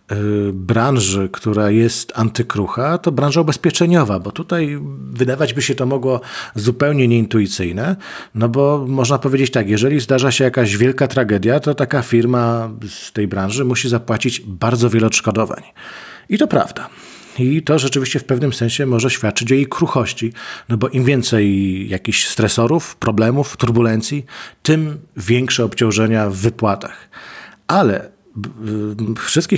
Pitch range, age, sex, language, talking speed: 110-145 Hz, 40-59, male, Polish, 135 wpm